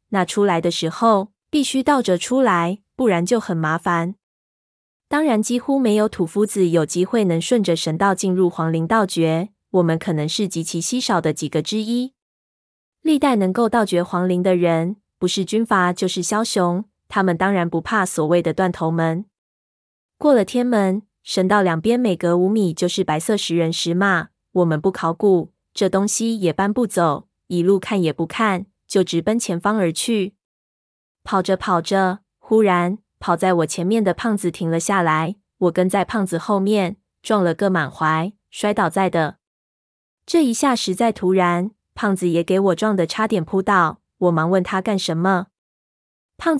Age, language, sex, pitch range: 20-39, Chinese, female, 175-215 Hz